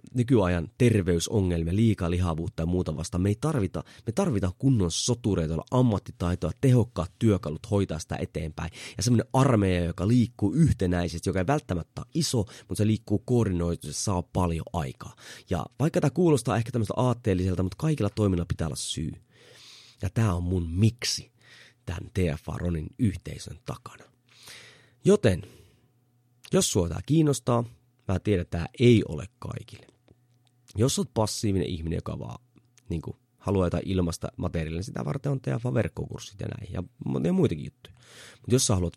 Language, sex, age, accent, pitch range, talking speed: Finnish, male, 30-49, native, 85-120 Hz, 150 wpm